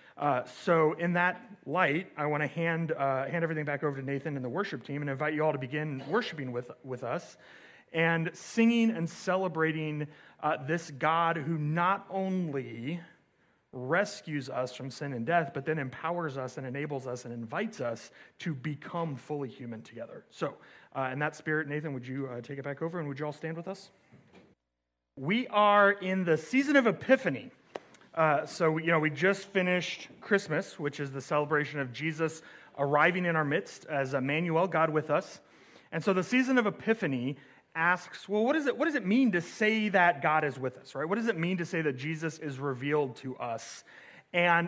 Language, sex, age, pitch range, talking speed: English, male, 30-49, 140-180 Hz, 195 wpm